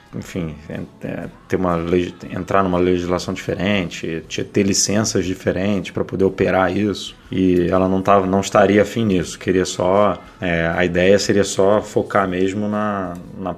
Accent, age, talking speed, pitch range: Brazilian, 20-39, 145 wpm, 95-110 Hz